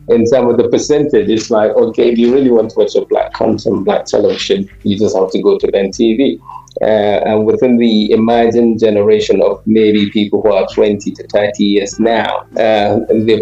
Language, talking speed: English, 200 wpm